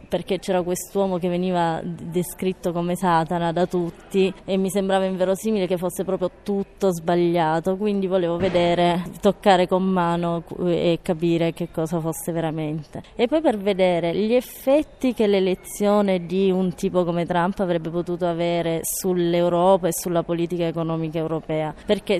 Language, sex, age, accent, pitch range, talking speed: Italian, female, 20-39, native, 170-195 Hz, 145 wpm